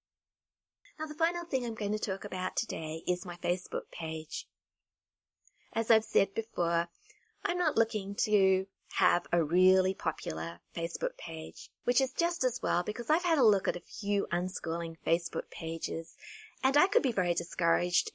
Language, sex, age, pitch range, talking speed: English, female, 30-49, 170-235 Hz, 165 wpm